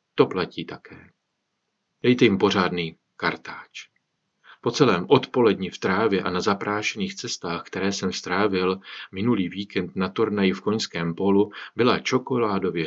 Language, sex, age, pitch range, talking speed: Czech, male, 40-59, 95-105 Hz, 130 wpm